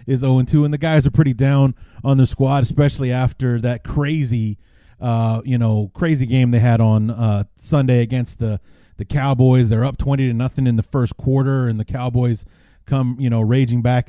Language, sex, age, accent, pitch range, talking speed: English, male, 30-49, American, 115-145 Hz, 205 wpm